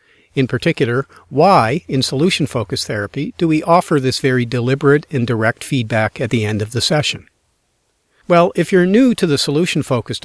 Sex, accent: male, American